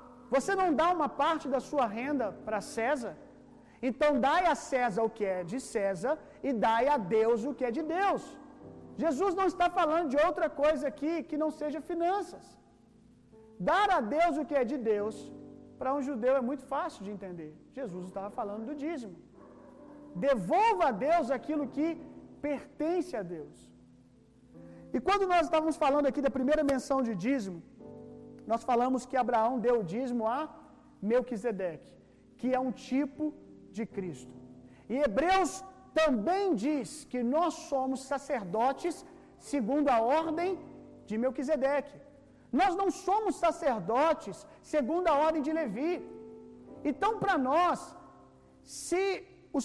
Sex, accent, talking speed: male, Brazilian, 145 wpm